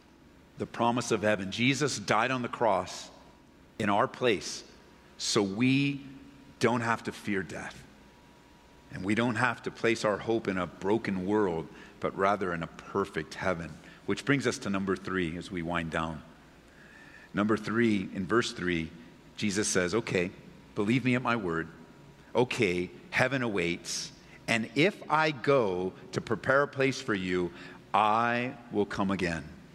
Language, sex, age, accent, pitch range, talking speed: English, male, 50-69, American, 95-120 Hz, 155 wpm